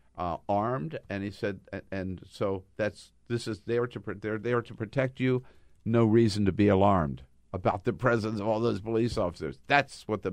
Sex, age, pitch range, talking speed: male, 50-69, 85-120 Hz, 205 wpm